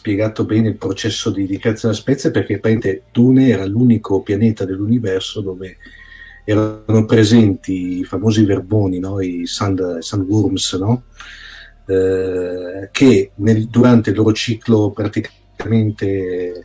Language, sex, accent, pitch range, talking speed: Italian, male, native, 100-120 Hz, 125 wpm